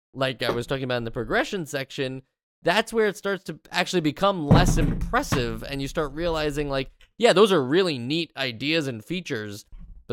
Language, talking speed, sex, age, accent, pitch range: English, 190 wpm, male, 20-39, American, 120-175 Hz